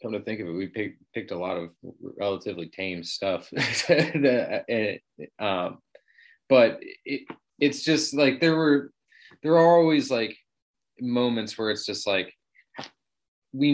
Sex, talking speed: male, 140 wpm